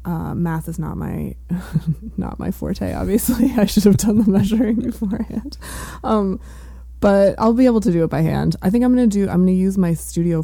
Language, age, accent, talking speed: English, 20-39, American, 220 wpm